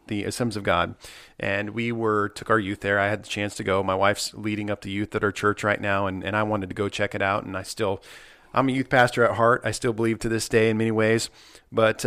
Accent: American